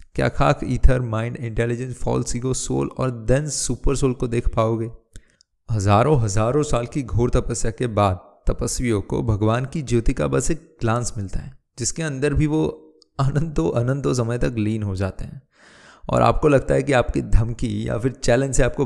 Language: Hindi